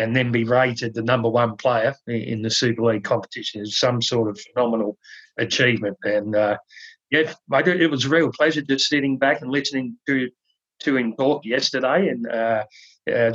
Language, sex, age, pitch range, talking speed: English, male, 40-59, 115-145 Hz, 175 wpm